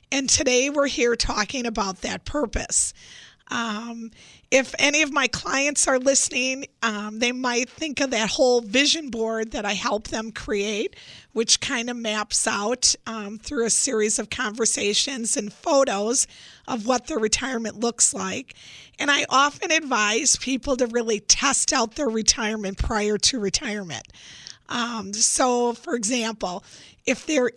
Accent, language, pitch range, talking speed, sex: American, English, 225-270 Hz, 150 wpm, female